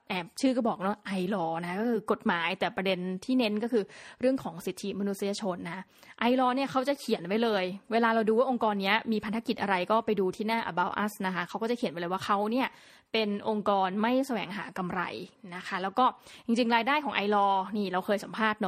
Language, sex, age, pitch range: Thai, female, 20-39, 190-235 Hz